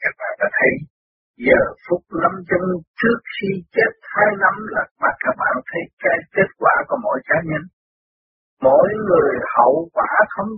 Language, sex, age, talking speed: Vietnamese, male, 50-69, 170 wpm